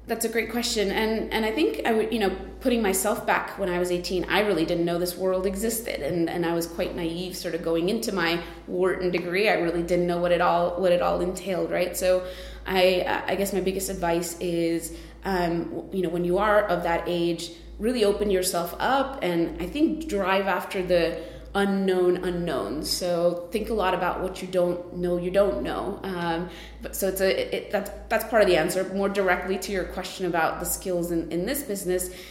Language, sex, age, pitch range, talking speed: English, female, 20-39, 170-205 Hz, 215 wpm